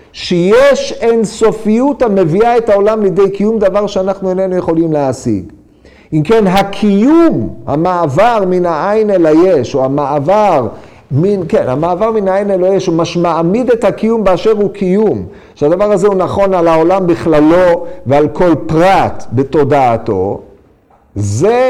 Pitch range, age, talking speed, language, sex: 145-200 Hz, 50-69, 135 wpm, Hebrew, male